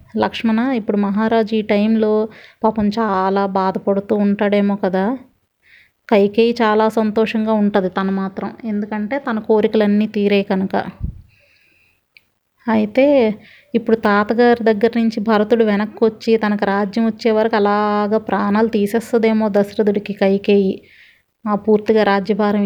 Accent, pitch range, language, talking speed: native, 205-230 Hz, Telugu, 105 wpm